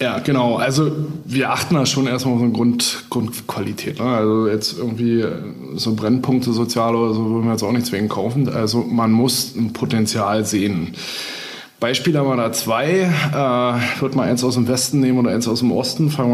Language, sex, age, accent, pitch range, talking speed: German, male, 20-39, German, 115-135 Hz, 200 wpm